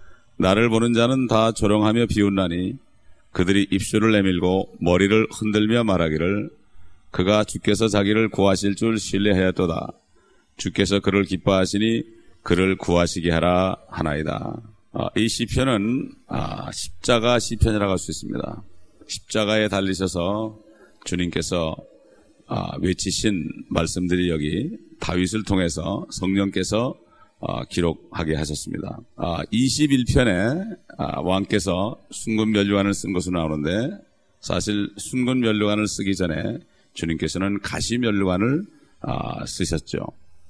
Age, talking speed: 40-59, 95 wpm